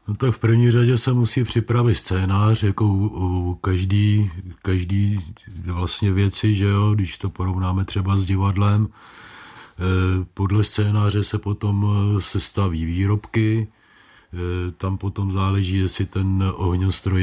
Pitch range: 85-100 Hz